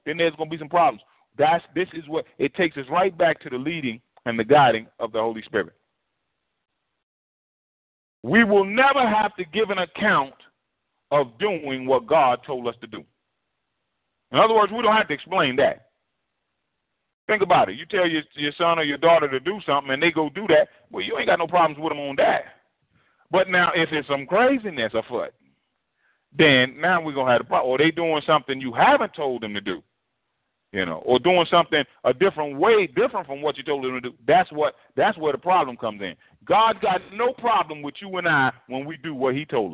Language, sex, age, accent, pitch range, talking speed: English, male, 40-59, American, 125-175 Hz, 215 wpm